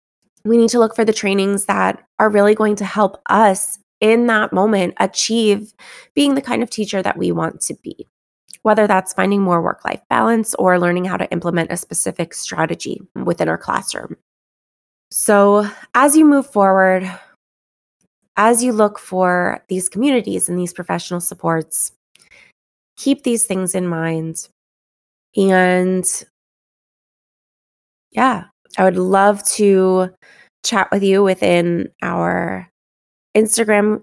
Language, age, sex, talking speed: English, 20-39, female, 135 wpm